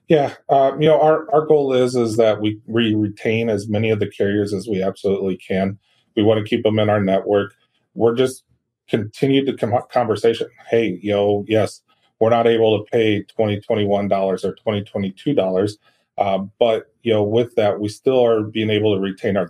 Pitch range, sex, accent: 100-115 Hz, male, American